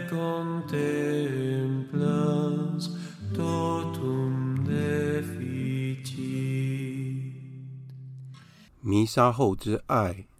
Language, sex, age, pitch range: Chinese, male, 50-69, 95-130 Hz